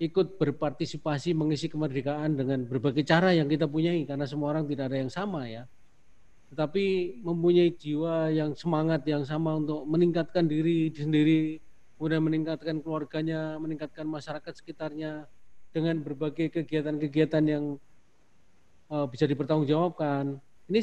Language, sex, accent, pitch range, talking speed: Indonesian, male, native, 145-190 Hz, 125 wpm